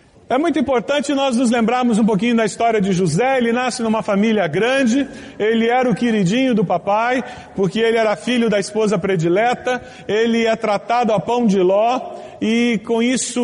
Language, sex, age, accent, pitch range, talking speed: Portuguese, male, 40-59, Brazilian, 210-245 Hz, 180 wpm